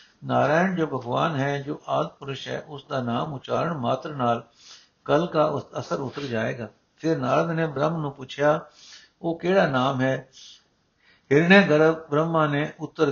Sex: male